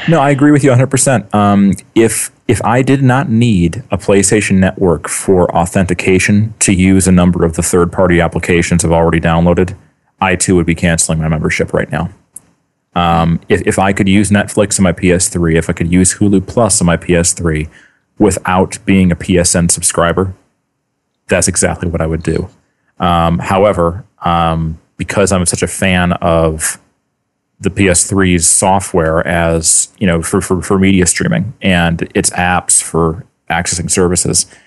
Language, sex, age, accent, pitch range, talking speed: English, male, 30-49, American, 85-100 Hz, 165 wpm